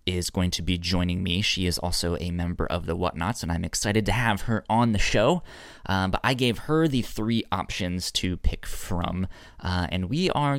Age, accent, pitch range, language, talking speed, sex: 20-39, American, 90-110 Hz, English, 215 wpm, male